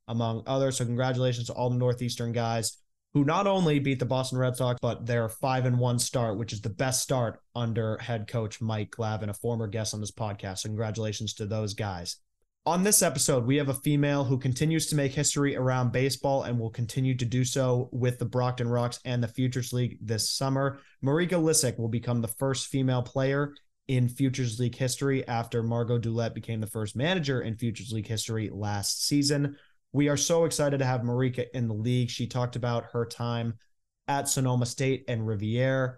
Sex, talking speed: male, 195 wpm